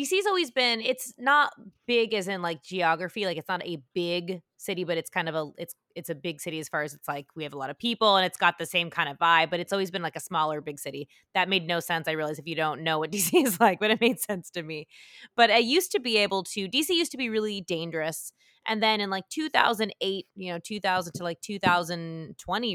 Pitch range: 160-215 Hz